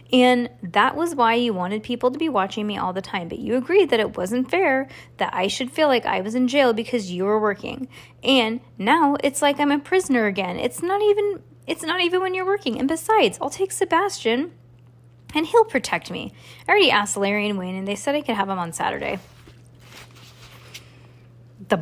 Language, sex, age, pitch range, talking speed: English, female, 20-39, 175-275 Hz, 205 wpm